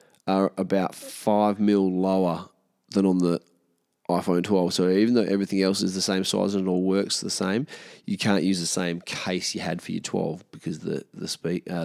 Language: English